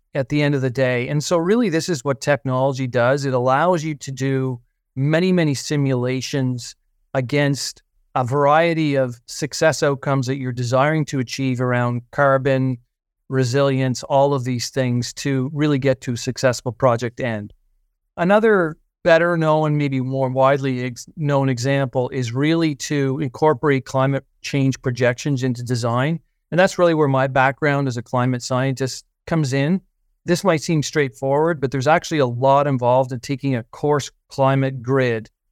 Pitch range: 125-150 Hz